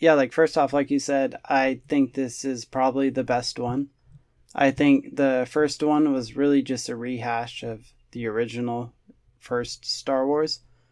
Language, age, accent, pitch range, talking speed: English, 20-39, American, 120-140 Hz, 170 wpm